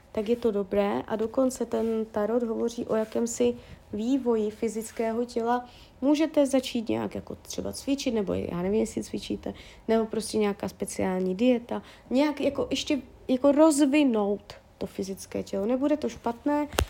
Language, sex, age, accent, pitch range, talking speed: Czech, female, 30-49, native, 215-260 Hz, 145 wpm